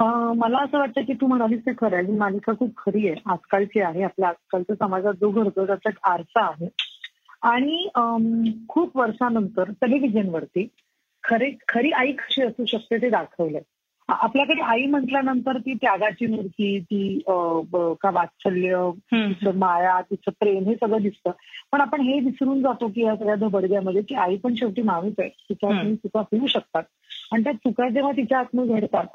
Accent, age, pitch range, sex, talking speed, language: native, 30-49, 200-250 Hz, female, 160 wpm, Marathi